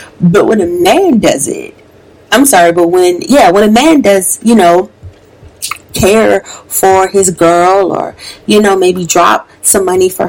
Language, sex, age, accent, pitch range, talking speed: English, female, 30-49, American, 185-275 Hz, 170 wpm